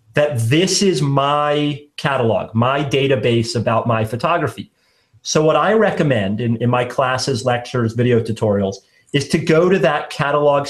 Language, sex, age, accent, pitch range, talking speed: English, male, 40-59, American, 125-160 Hz, 150 wpm